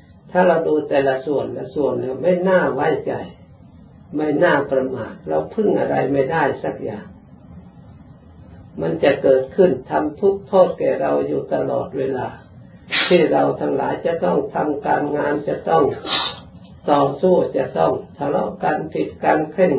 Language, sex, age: Thai, male, 50-69